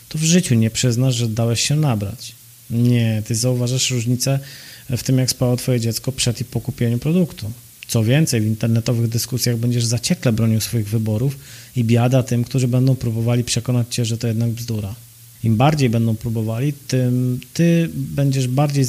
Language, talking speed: Polish, 170 wpm